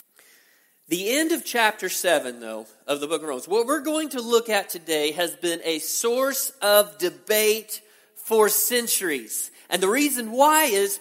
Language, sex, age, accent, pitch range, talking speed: English, male, 40-59, American, 160-255 Hz, 170 wpm